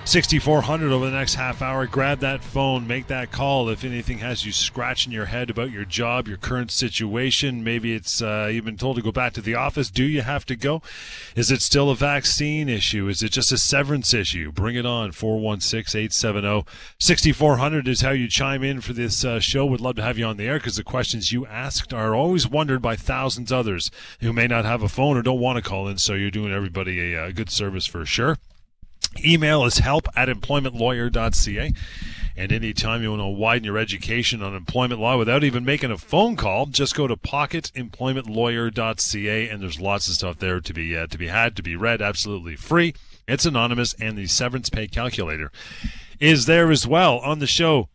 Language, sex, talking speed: English, male, 210 wpm